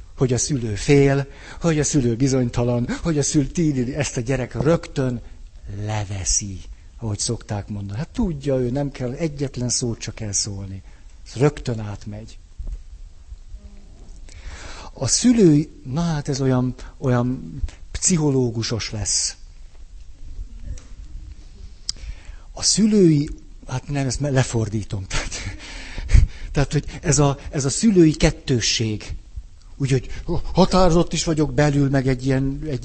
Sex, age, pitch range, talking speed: male, 60-79, 90-145 Hz, 115 wpm